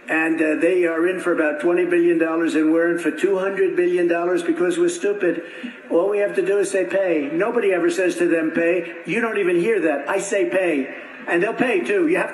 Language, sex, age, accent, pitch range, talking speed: English, male, 60-79, American, 195-260 Hz, 225 wpm